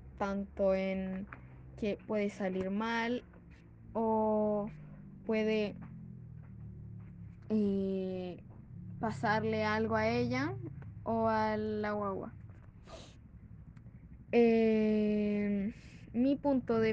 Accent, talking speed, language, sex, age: Mexican, 75 wpm, Spanish, female, 10-29